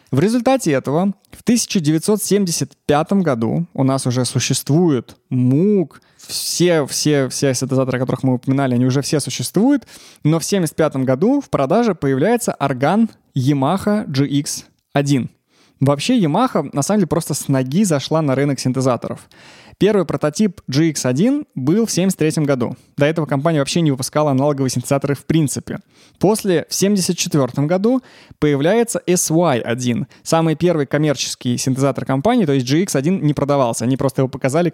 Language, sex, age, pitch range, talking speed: Russian, male, 20-39, 130-180 Hz, 140 wpm